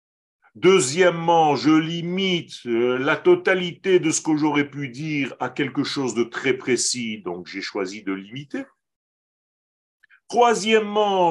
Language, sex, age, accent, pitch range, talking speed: French, male, 40-59, French, 135-215 Hz, 120 wpm